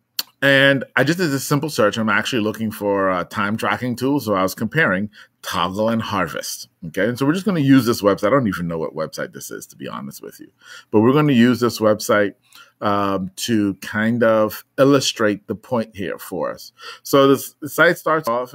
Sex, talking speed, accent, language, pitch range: male, 220 wpm, American, English, 110-140 Hz